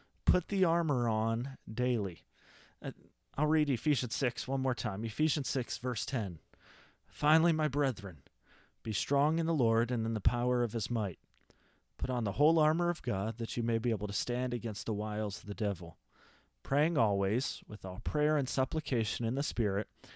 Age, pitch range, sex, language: 30-49, 110-140 Hz, male, English